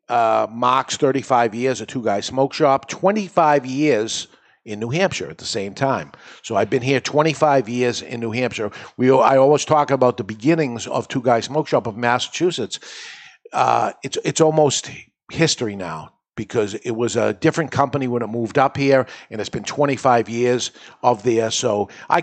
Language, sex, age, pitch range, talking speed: English, male, 50-69, 115-145 Hz, 180 wpm